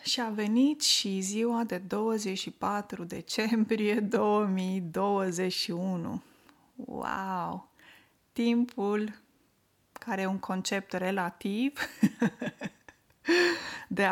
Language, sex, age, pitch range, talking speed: Romanian, female, 20-39, 185-235 Hz, 70 wpm